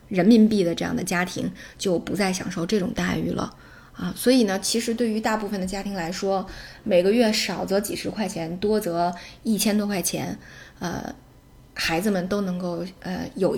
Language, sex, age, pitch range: Chinese, female, 20-39, 185-235 Hz